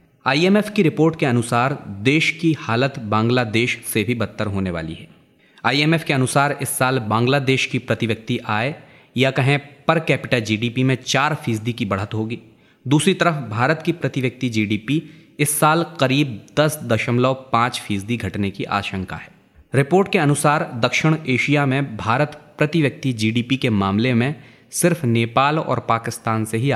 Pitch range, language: 115-150 Hz, Hindi